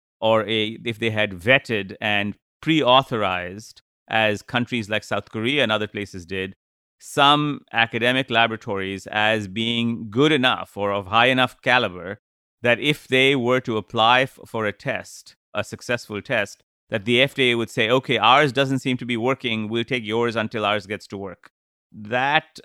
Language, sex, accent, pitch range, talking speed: English, male, Indian, 100-120 Hz, 165 wpm